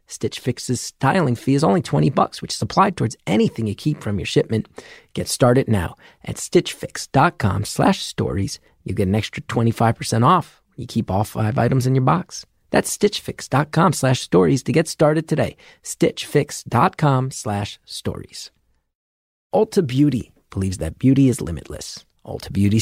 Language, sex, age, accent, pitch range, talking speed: English, male, 40-59, American, 110-150 Hz, 145 wpm